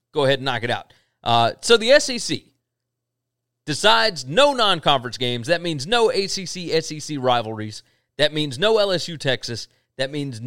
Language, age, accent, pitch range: English, 30-49, American, 125-165 Hz